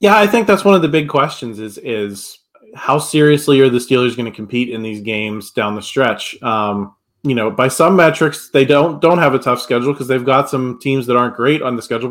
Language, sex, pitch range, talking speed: English, male, 125-165 Hz, 245 wpm